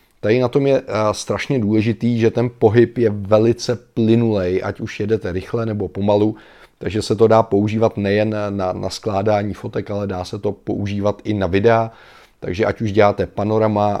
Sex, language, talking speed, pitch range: male, Czech, 180 wpm, 100-110 Hz